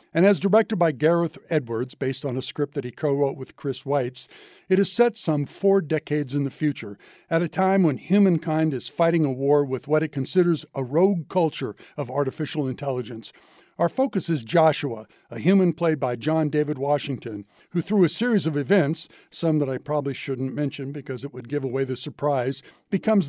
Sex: male